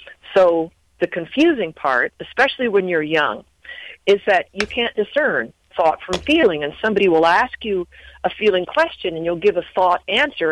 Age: 40-59